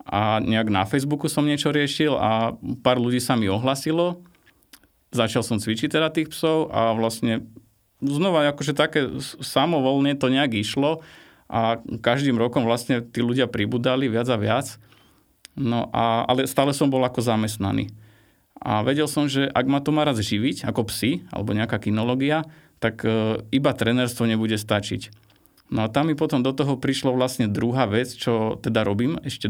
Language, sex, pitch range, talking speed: Slovak, male, 115-140 Hz, 165 wpm